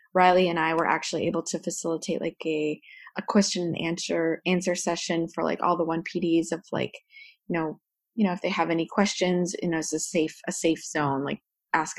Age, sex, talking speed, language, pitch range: 20-39, female, 215 wpm, English, 165-190 Hz